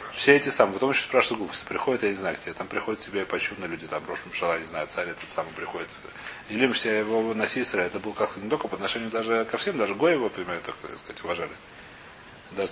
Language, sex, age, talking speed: Russian, male, 30-49, 230 wpm